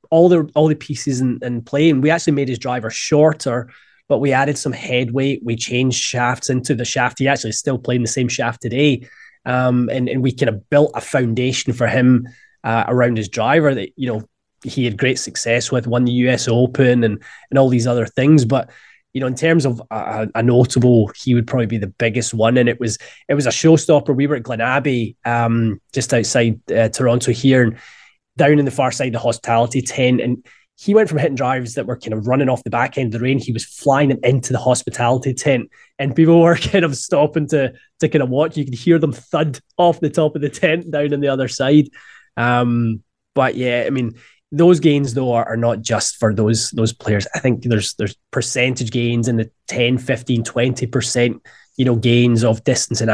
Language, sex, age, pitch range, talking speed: English, male, 20-39, 120-140 Hz, 225 wpm